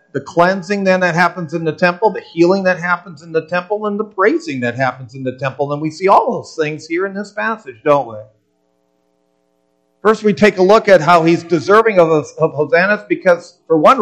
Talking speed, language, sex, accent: 215 wpm, English, male, American